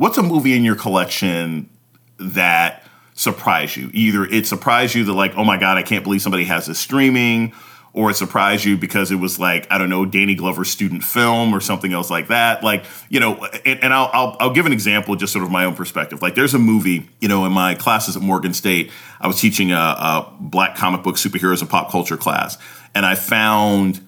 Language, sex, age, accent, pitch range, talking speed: English, male, 30-49, American, 90-110 Hz, 225 wpm